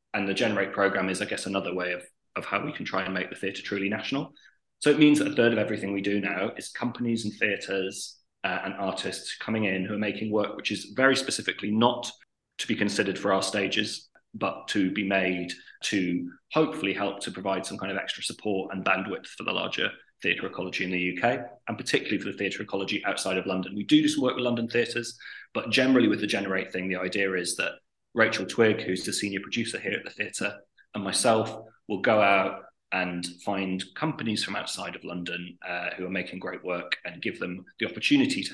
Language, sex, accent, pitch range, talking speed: English, male, British, 95-115 Hz, 215 wpm